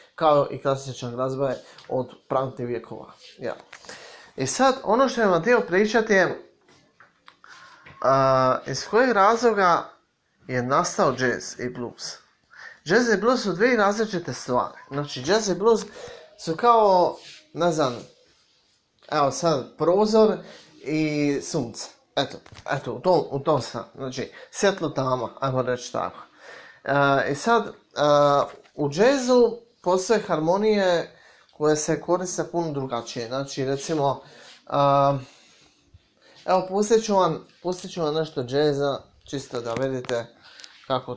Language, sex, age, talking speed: Croatian, male, 30-49, 125 wpm